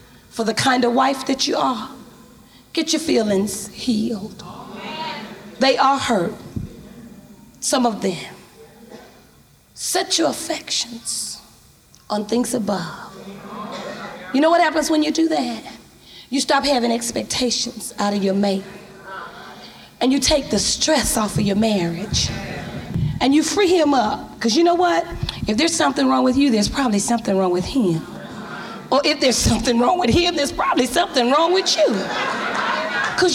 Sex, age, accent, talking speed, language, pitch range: female, 30-49, American, 150 wpm, English, 215-315 Hz